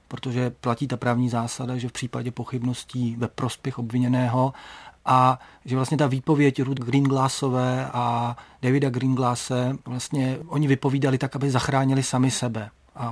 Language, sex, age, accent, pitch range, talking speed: Czech, male, 40-59, native, 125-135 Hz, 140 wpm